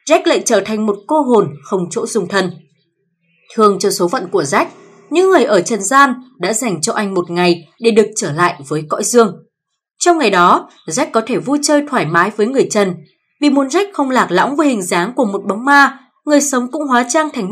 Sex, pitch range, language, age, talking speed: female, 190-280 Hz, Vietnamese, 20-39, 230 wpm